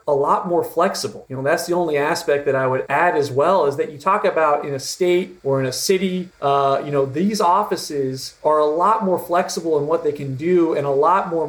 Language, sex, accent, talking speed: English, male, American, 245 wpm